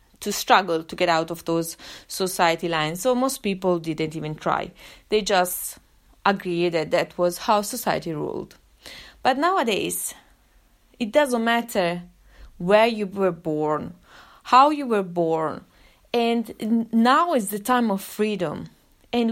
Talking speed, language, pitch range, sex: 140 wpm, English, 180-230 Hz, female